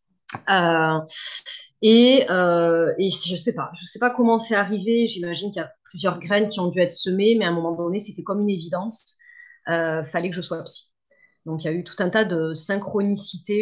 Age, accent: 30-49, French